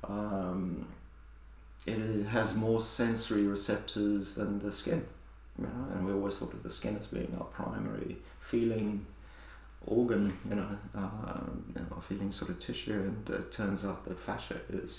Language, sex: English, male